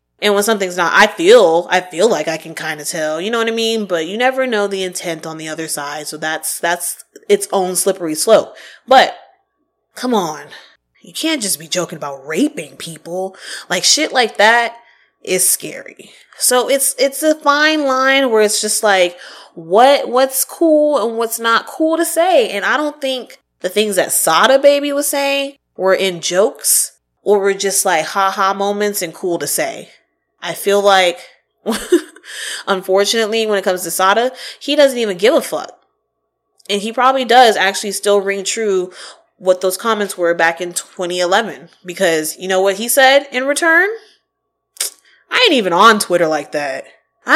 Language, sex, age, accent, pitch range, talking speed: English, female, 20-39, American, 175-255 Hz, 180 wpm